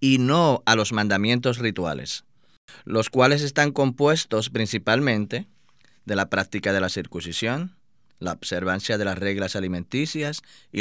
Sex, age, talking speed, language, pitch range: male, 30-49, 135 wpm, Spanish, 105-150 Hz